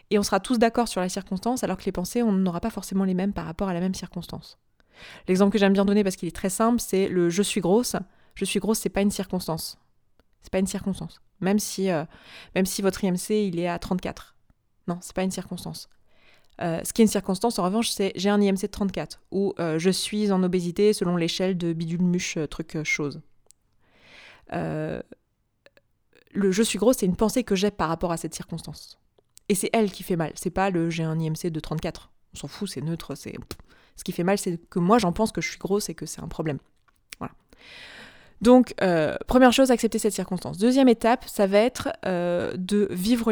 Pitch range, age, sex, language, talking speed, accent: 175-210 Hz, 20-39, female, French, 225 wpm, French